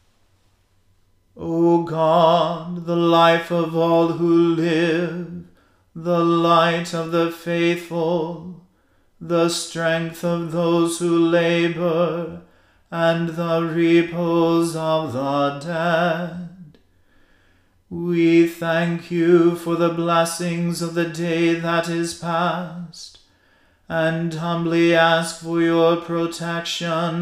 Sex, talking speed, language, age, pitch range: male, 95 wpm, English, 30-49, 165-170 Hz